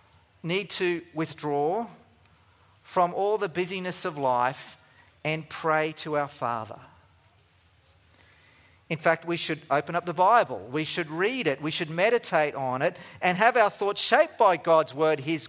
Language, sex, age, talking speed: English, male, 40-59, 155 wpm